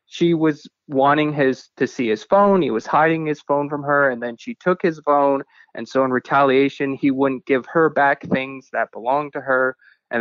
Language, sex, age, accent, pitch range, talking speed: English, male, 20-39, American, 130-160 Hz, 210 wpm